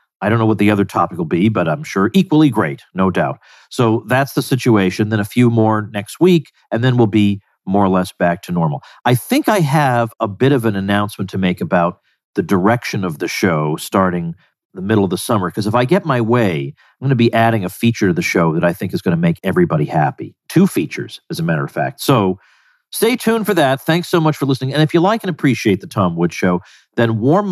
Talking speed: 240 wpm